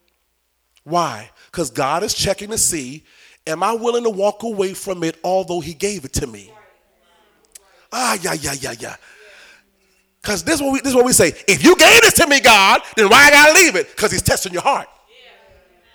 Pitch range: 225-325 Hz